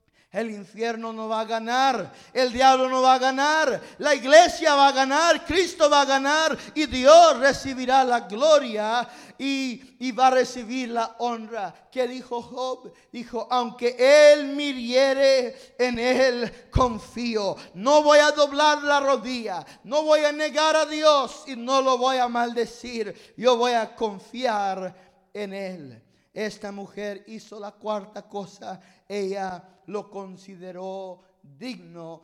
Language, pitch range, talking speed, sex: English, 195-255 Hz, 145 wpm, male